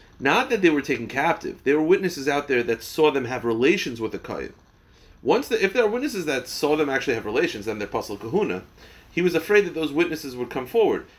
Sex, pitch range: male, 120-170 Hz